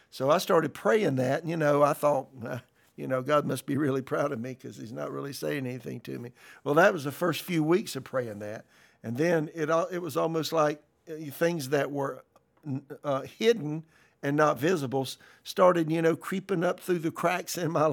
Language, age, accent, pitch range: English, 60-79, American, 125-155 Hz